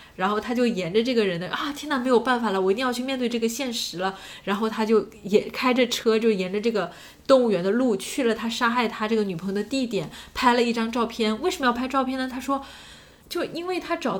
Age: 10-29